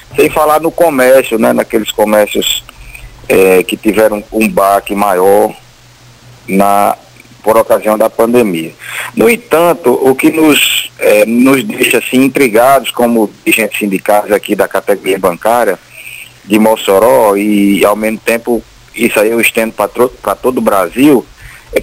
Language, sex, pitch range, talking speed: Portuguese, male, 110-145 Hz, 145 wpm